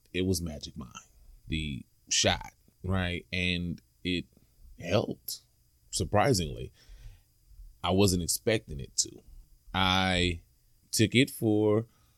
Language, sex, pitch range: English, male, 85-105 Hz